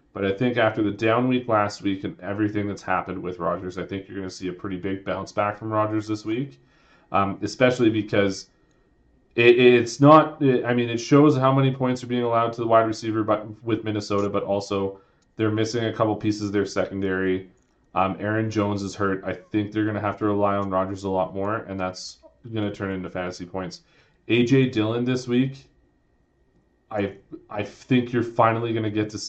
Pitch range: 95-115 Hz